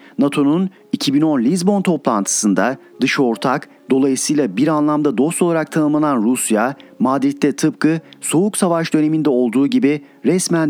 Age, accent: 50-69, native